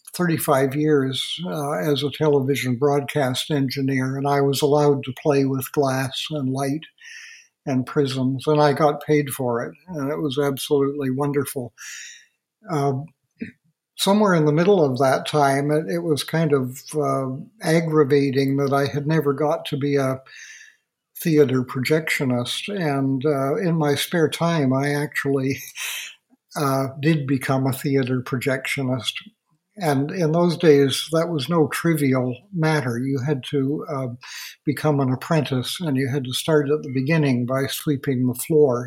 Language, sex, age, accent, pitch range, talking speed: English, male, 60-79, American, 135-155 Hz, 150 wpm